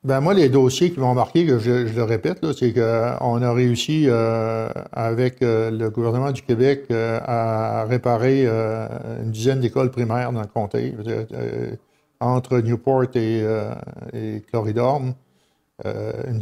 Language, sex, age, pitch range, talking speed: French, male, 60-79, 115-130 Hz, 155 wpm